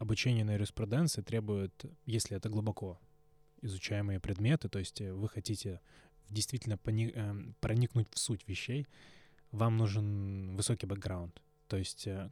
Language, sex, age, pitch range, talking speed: Russian, male, 20-39, 100-125 Hz, 125 wpm